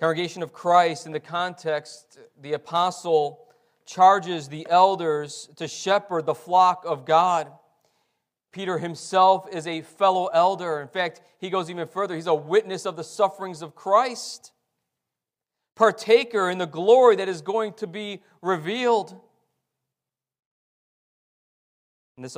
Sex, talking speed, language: male, 130 wpm, English